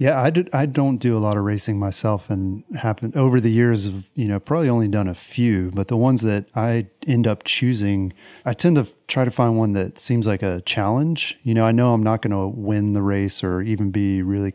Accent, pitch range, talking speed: American, 100-120 Hz, 245 wpm